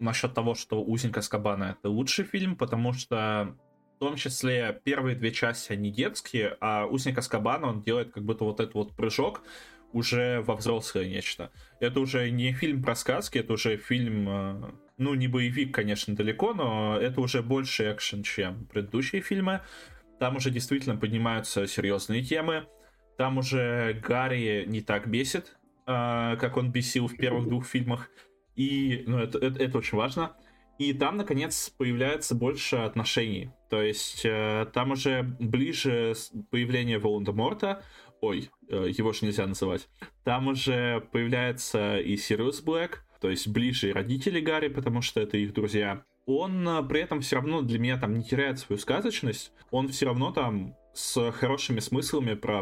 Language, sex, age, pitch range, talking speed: Russian, male, 20-39, 110-135 Hz, 160 wpm